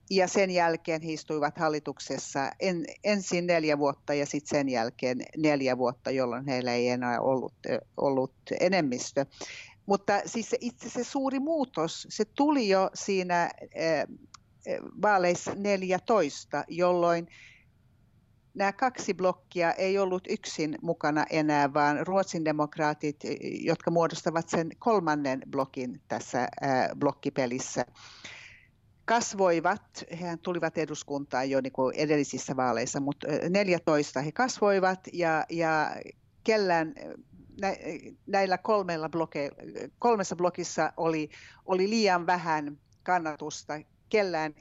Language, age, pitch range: Finnish, 50-69, 145-185 Hz